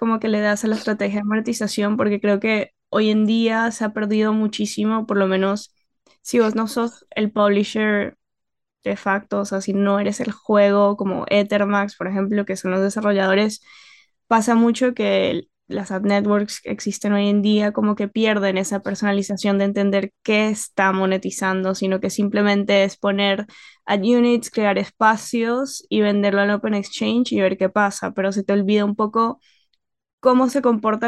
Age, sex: 10-29, female